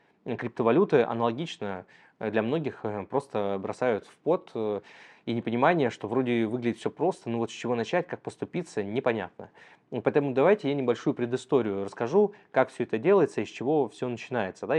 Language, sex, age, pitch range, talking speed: Russian, male, 20-39, 110-140 Hz, 155 wpm